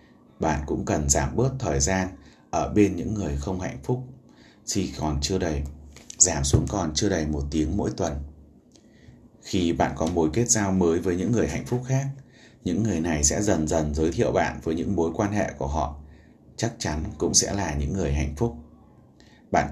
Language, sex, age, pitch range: Vietnamese, male, 30-49, 75-105 Hz